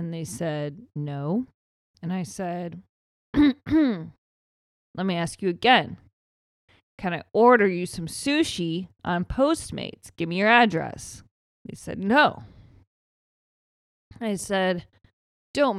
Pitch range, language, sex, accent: 150-195 Hz, English, female, American